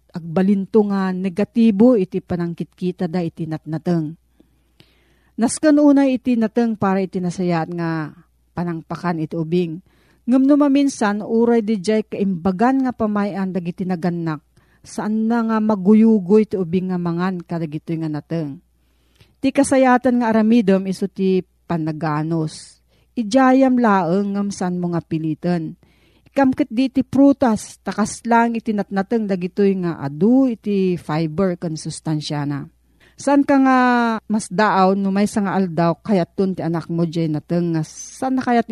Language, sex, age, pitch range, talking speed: Filipino, female, 40-59, 170-225 Hz, 125 wpm